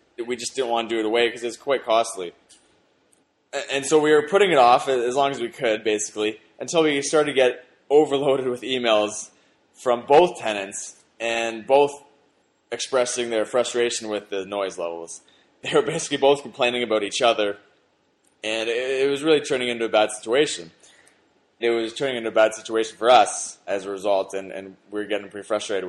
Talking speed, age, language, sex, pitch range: 190 wpm, 20-39, English, male, 105-140 Hz